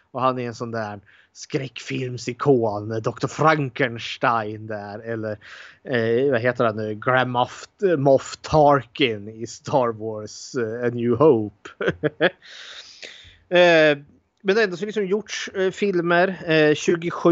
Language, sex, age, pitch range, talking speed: Swedish, male, 20-39, 115-150 Hz, 130 wpm